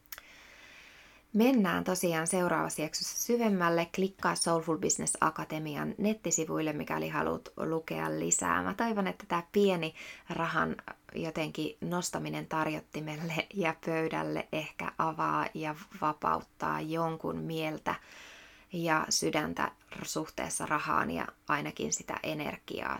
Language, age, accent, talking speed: Finnish, 20-39, native, 100 wpm